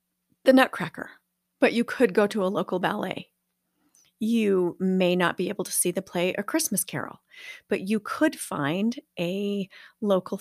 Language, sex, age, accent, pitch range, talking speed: English, female, 40-59, American, 180-210 Hz, 160 wpm